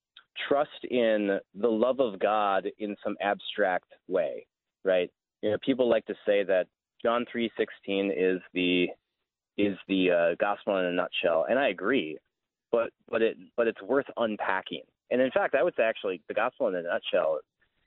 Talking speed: 170 wpm